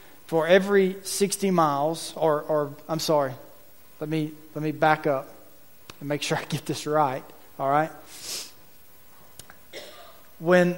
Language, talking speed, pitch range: English, 135 wpm, 150-180 Hz